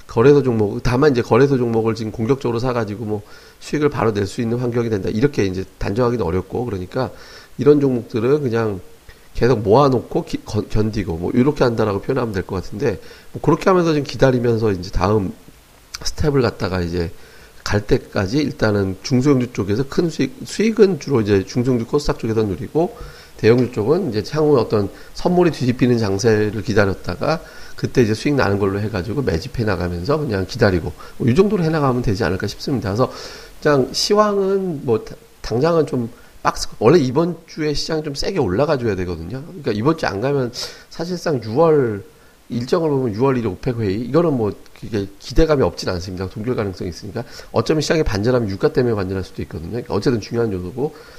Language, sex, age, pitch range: Korean, male, 40-59, 100-145 Hz